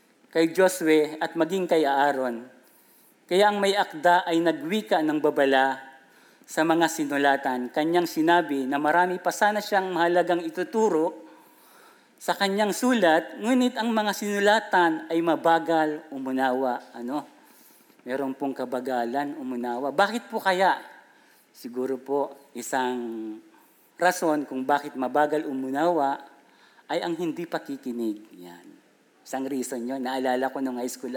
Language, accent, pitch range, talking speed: Filipino, native, 130-175 Hz, 125 wpm